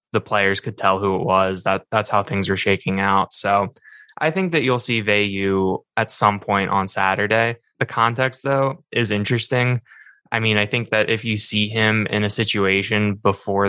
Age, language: 20-39, English